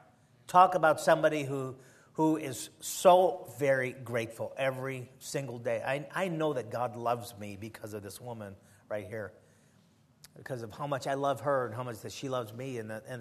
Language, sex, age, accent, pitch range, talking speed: English, male, 50-69, American, 120-150 Hz, 190 wpm